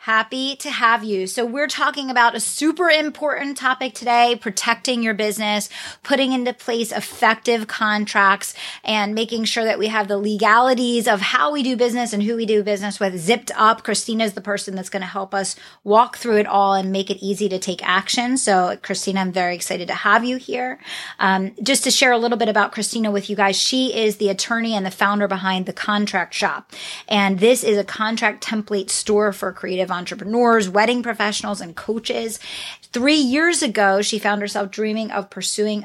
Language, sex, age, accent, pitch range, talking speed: English, female, 30-49, American, 195-240 Hz, 195 wpm